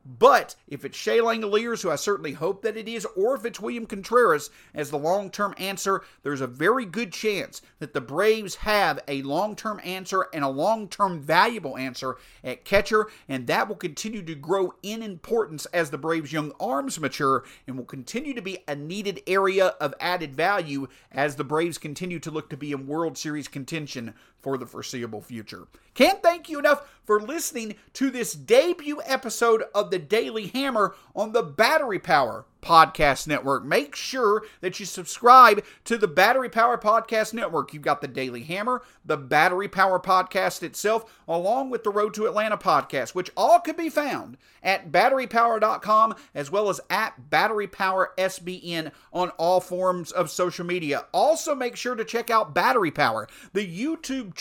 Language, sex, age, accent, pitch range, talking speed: English, male, 50-69, American, 160-225 Hz, 175 wpm